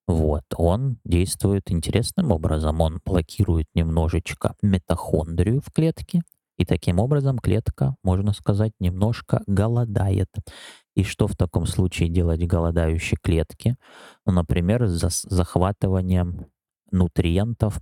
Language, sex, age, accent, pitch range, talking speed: Russian, male, 20-39, native, 85-105 Hz, 105 wpm